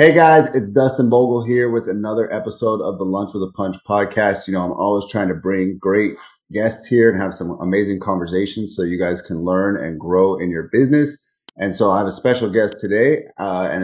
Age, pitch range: 30-49, 90-110 Hz